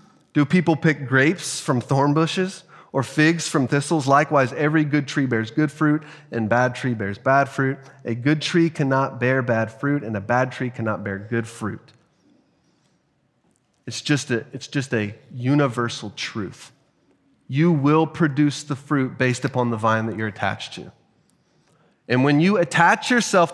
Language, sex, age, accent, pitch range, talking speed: English, male, 30-49, American, 130-165 Hz, 160 wpm